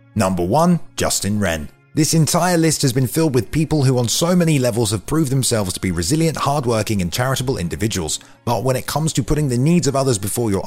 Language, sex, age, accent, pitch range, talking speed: English, male, 30-49, British, 105-150 Hz, 220 wpm